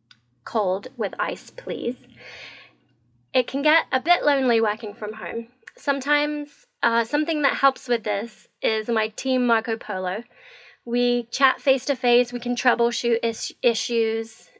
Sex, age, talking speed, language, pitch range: female, 20-39, 140 wpm, English, 215-260 Hz